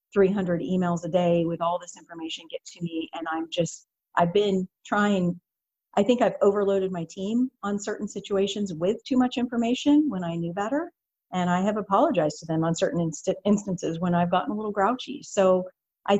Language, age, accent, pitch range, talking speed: English, 50-69, American, 170-200 Hz, 190 wpm